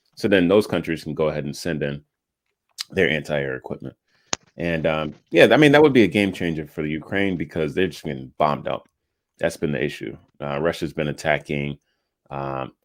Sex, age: male, 30-49